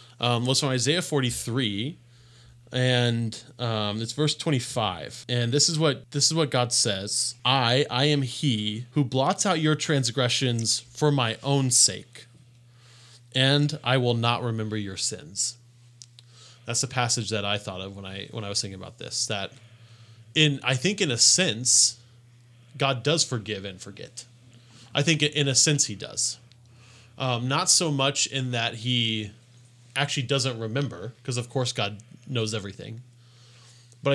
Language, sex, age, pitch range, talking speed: English, male, 20-39, 115-135 Hz, 160 wpm